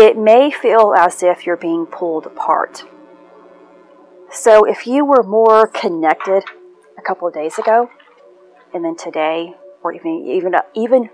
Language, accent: English, American